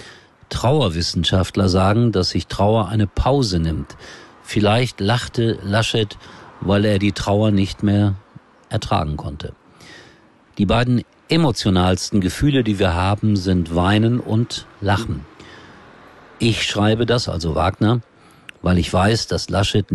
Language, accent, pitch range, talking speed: German, German, 90-115 Hz, 120 wpm